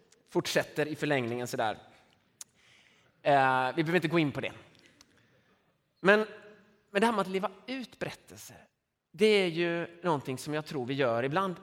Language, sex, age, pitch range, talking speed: Swedish, male, 30-49, 130-190 Hz, 155 wpm